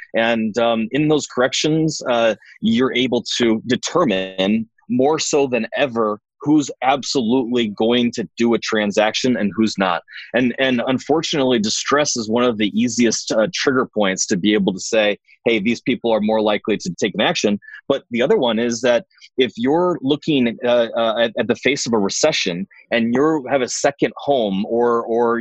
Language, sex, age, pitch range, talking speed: English, male, 30-49, 110-140 Hz, 180 wpm